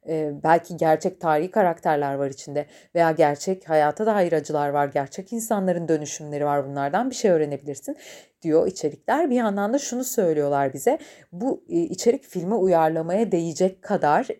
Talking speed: 140 wpm